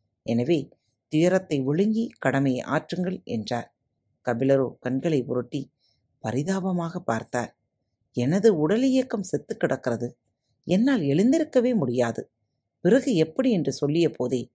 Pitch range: 120-190 Hz